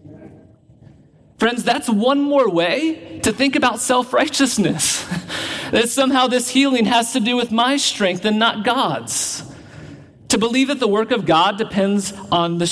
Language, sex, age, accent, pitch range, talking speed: English, male, 40-59, American, 155-225 Hz, 150 wpm